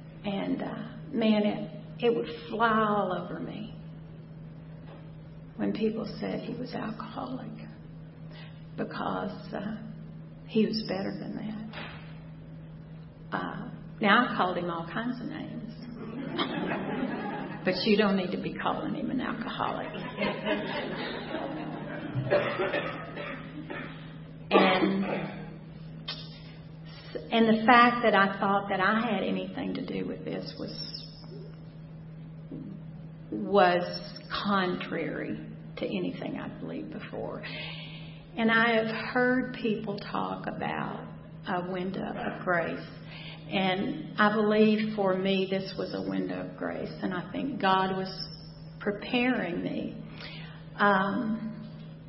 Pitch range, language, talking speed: 160-210 Hz, English, 110 wpm